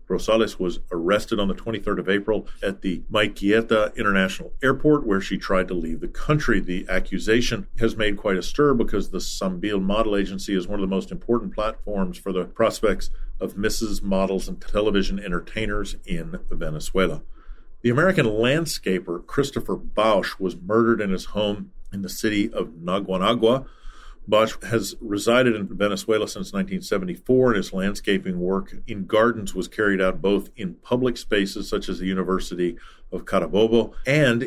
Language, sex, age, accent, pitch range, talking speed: English, male, 40-59, American, 95-120 Hz, 160 wpm